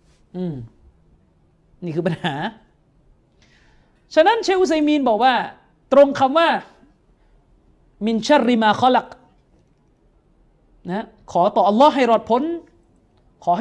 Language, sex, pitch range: Thai, male, 180-275 Hz